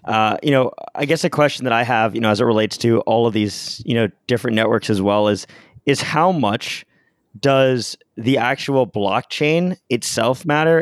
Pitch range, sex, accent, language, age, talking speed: 105-135 Hz, male, American, English, 20-39, 195 wpm